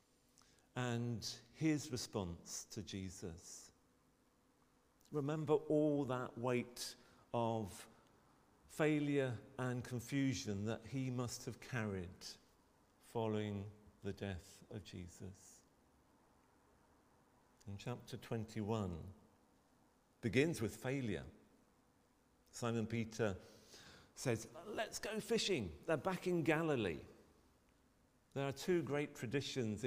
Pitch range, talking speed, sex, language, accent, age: 100-130 Hz, 90 wpm, male, English, British, 50-69